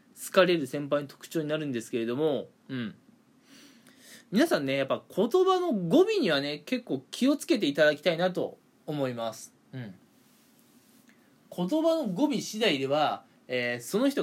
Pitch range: 155-255 Hz